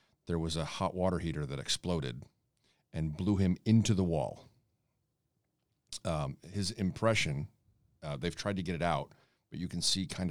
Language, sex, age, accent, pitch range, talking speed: English, male, 40-59, American, 75-105 Hz, 165 wpm